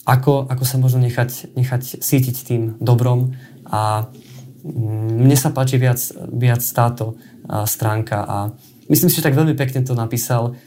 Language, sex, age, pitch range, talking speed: Slovak, male, 20-39, 115-130 Hz, 145 wpm